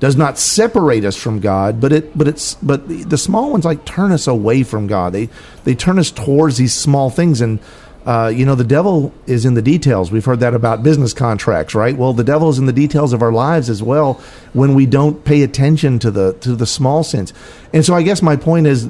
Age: 50-69